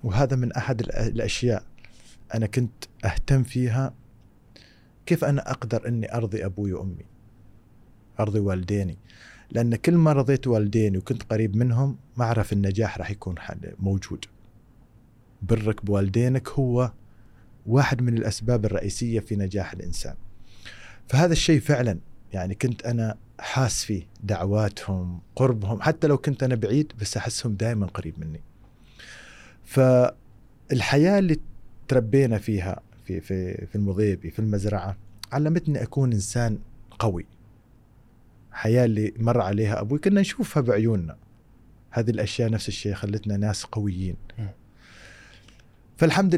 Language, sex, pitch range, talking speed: Arabic, male, 105-125 Hz, 120 wpm